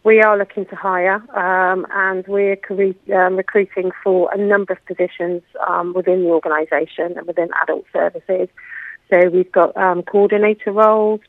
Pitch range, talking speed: 180-205 Hz, 155 wpm